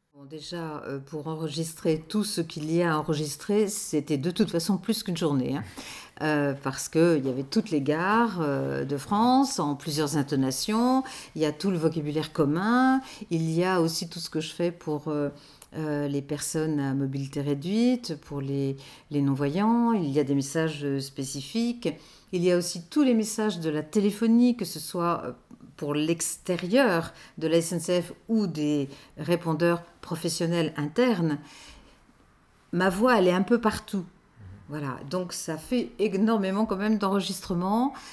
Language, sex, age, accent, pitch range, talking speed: French, female, 50-69, French, 150-190 Hz, 165 wpm